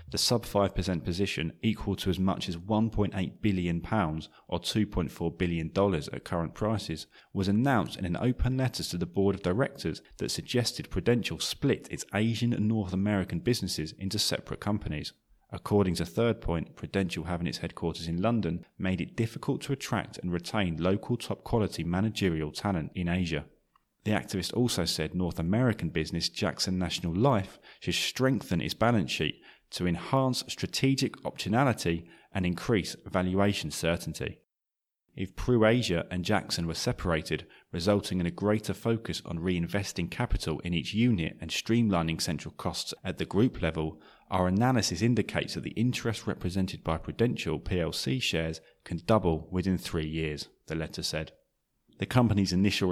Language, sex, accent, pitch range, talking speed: English, male, British, 85-110 Hz, 150 wpm